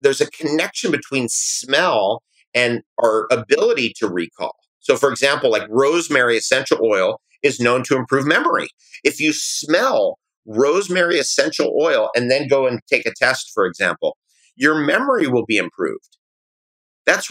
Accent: American